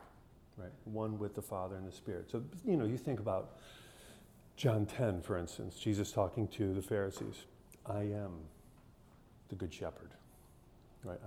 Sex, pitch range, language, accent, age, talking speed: male, 95-115 Hz, English, American, 40-59, 155 wpm